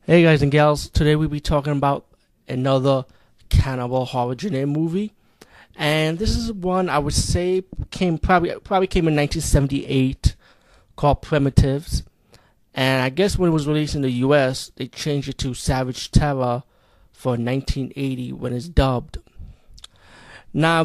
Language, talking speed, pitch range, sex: English, 150 wpm, 130-155 Hz, male